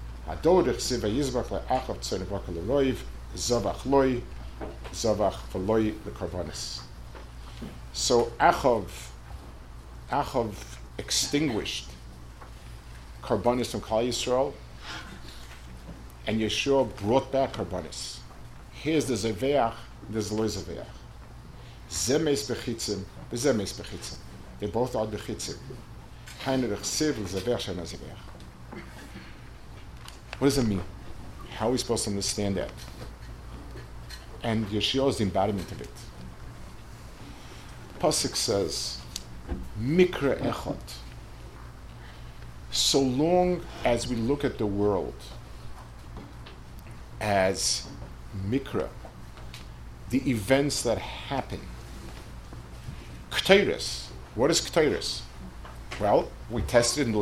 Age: 50-69